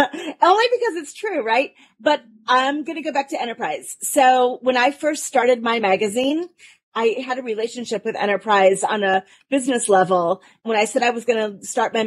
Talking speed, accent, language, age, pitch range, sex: 195 wpm, American, English, 30-49, 220-290 Hz, female